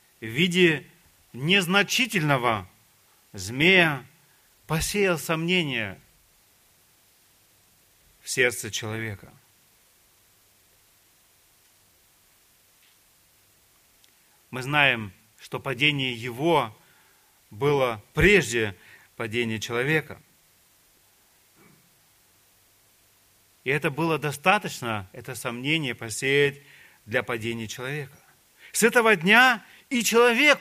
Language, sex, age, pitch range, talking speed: Russian, male, 40-59, 115-170 Hz, 65 wpm